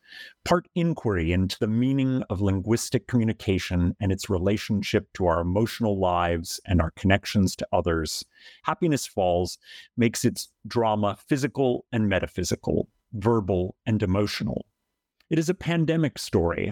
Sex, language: male, English